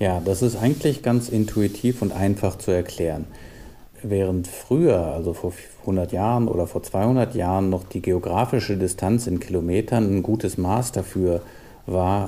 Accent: German